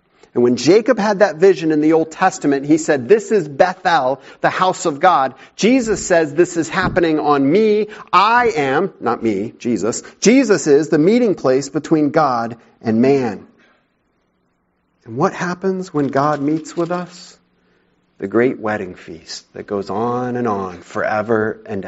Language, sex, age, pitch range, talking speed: English, male, 40-59, 110-155 Hz, 160 wpm